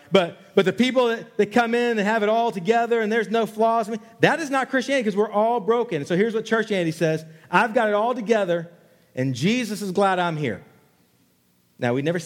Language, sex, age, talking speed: English, male, 40-59, 215 wpm